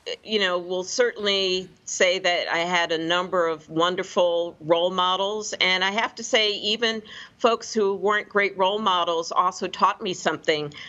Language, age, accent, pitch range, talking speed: English, 50-69, American, 155-185 Hz, 170 wpm